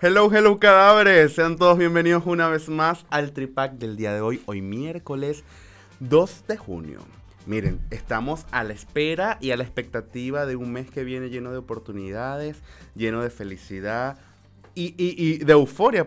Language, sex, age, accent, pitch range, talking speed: Spanish, male, 20-39, Venezuelan, 105-155 Hz, 170 wpm